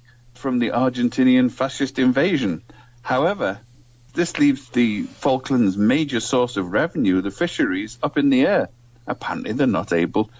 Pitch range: 120-165 Hz